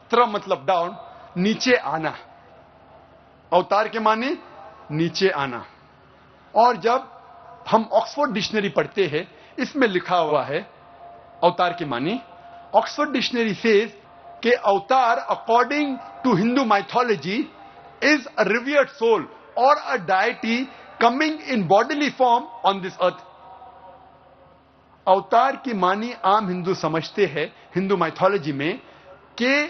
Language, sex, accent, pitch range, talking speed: Hindi, male, native, 185-260 Hz, 110 wpm